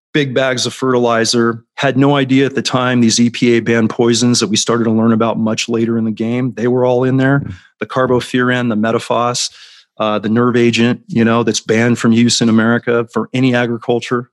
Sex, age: male, 40-59